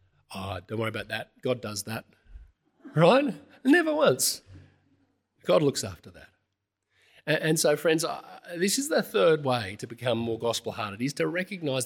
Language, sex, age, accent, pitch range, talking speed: English, male, 40-59, Australian, 110-155 Hz, 150 wpm